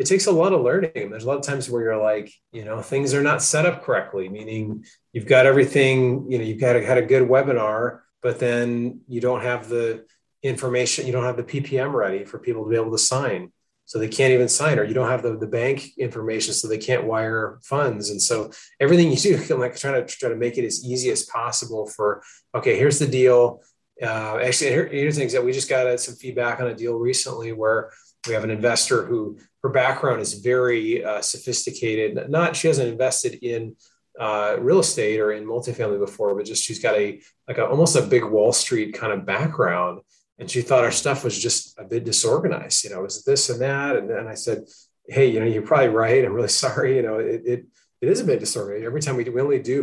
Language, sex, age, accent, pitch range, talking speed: English, male, 30-49, American, 115-140 Hz, 235 wpm